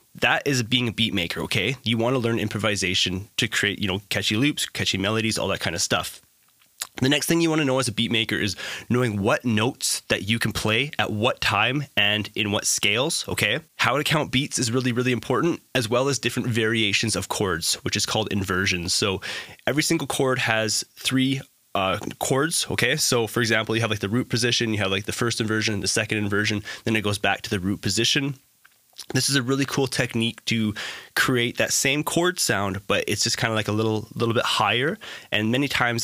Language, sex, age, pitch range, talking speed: English, male, 20-39, 105-125 Hz, 220 wpm